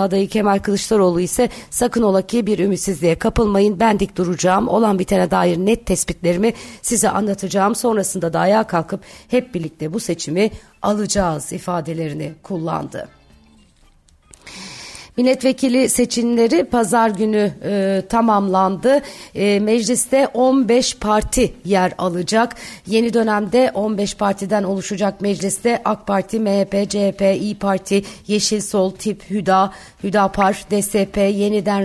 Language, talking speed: Turkish, 115 wpm